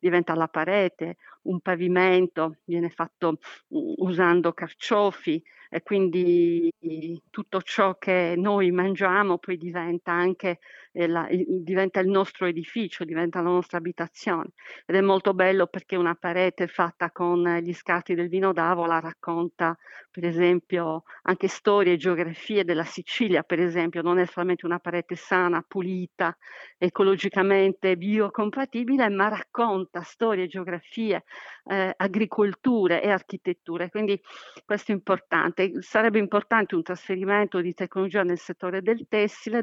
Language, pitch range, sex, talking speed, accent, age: Italian, 175-200 Hz, female, 125 wpm, native, 50-69